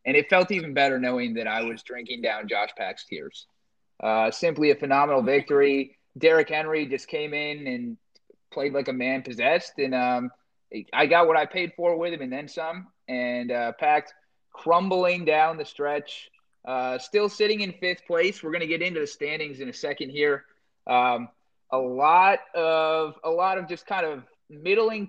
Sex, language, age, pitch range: male, English, 30-49, 140-175 Hz